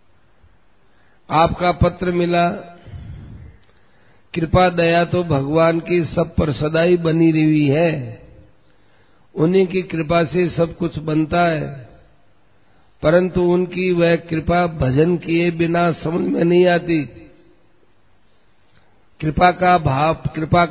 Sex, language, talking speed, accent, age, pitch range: male, Hindi, 105 wpm, native, 50-69, 145-175 Hz